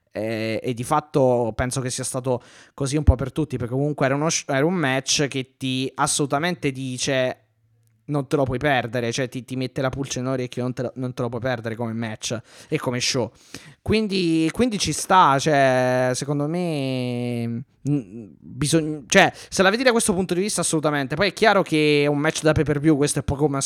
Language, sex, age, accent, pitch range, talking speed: Italian, male, 20-39, native, 125-160 Hz, 215 wpm